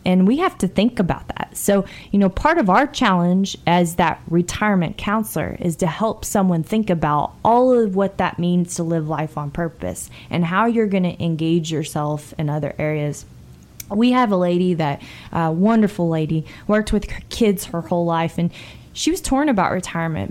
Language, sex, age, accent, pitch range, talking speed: English, female, 20-39, American, 165-195 Hz, 190 wpm